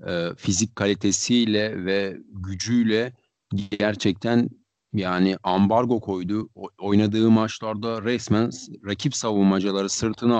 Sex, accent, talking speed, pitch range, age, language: male, native, 80 wpm, 105-130 Hz, 40-59, Turkish